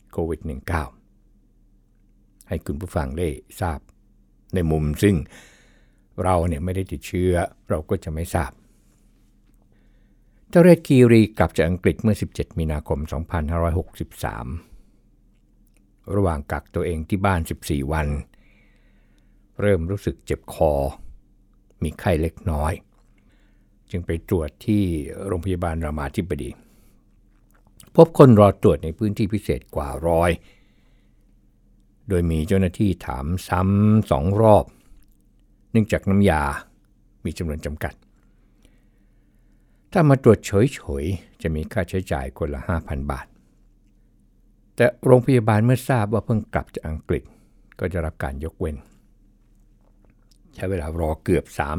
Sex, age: male, 60-79